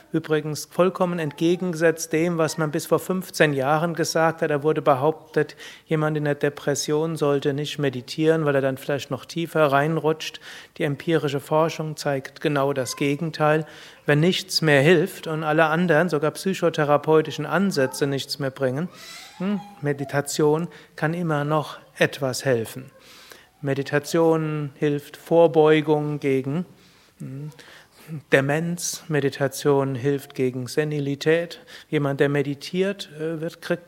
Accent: German